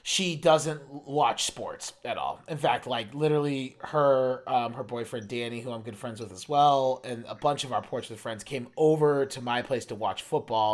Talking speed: 210 wpm